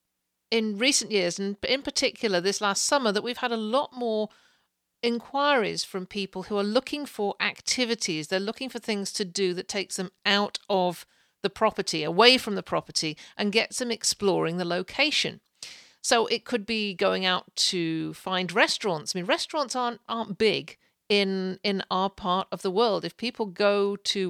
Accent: British